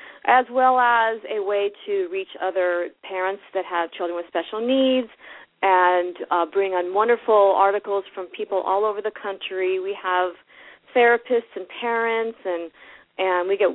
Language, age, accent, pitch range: English, 40-59, American, 180-220 Hz